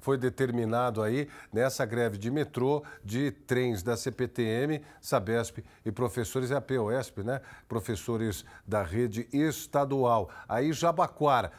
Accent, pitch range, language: Brazilian, 125-155 Hz, Portuguese